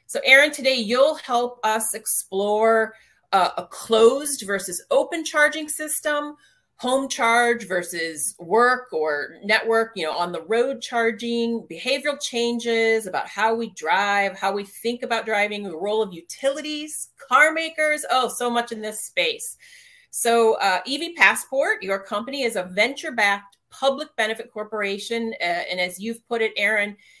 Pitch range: 195-255 Hz